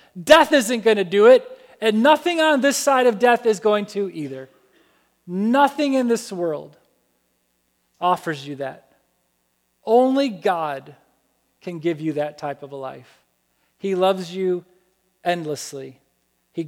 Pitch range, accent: 175-270 Hz, American